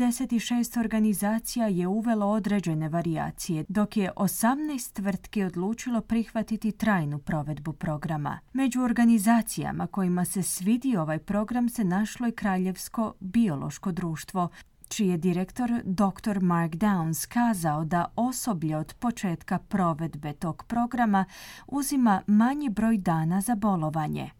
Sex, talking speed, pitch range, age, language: female, 115 wpm, 165-220 Hz, 30-49, Croatian